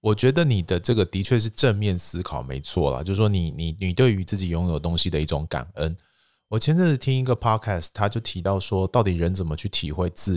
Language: Chinese